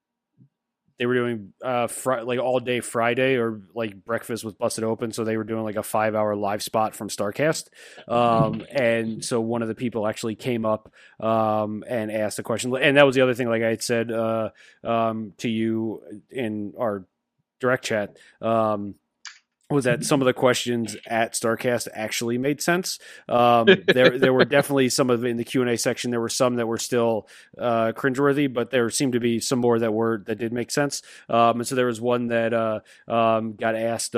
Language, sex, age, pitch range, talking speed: English, male, 30-49, 110-125 Hz, 205 wpm